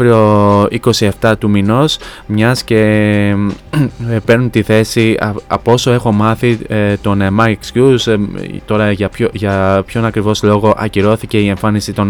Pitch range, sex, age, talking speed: 100-110 Hz, male, 20-39, 120 wpm